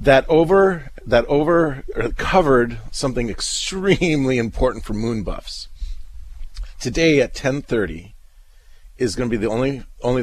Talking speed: 115 wpm